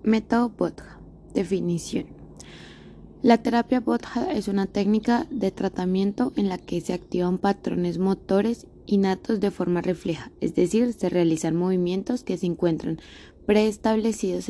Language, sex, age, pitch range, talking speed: Spanish, female, 20-39, 170-210 Hz, 130 wpm